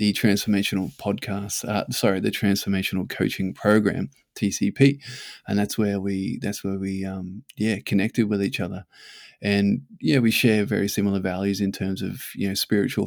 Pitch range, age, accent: 100-110 Hz, 20-39, Australian